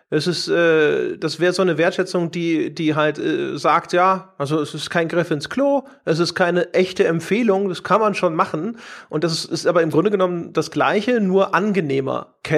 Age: 40-59